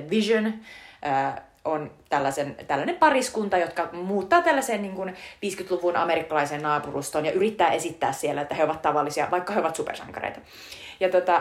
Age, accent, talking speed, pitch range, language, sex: 30-49, native, 135 wpm, 150-200 Hz, Finnish, female